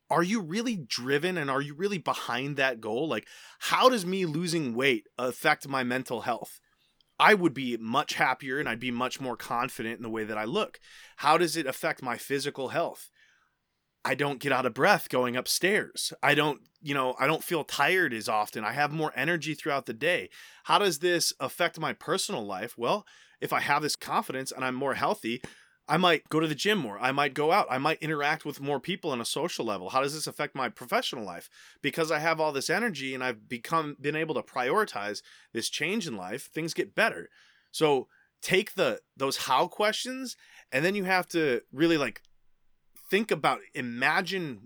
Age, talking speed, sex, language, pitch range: 20-39, 205 wpm, male, English, 125-170 Hz